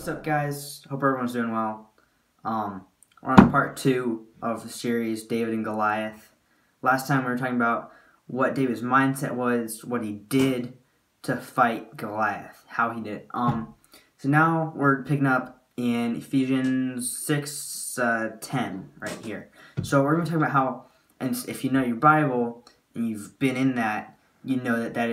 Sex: male